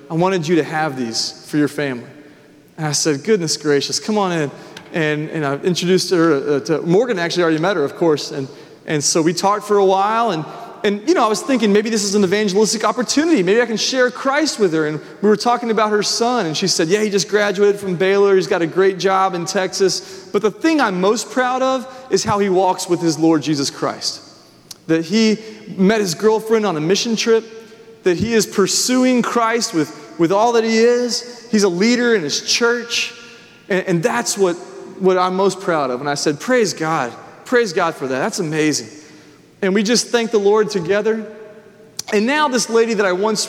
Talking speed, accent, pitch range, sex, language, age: 220 wpm, American, 165-215 Hz, male, English, 30-49